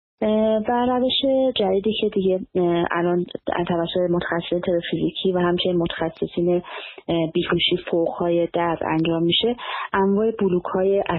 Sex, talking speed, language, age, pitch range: female, 100 wpm, Persian, 20-39, 170-205 Hz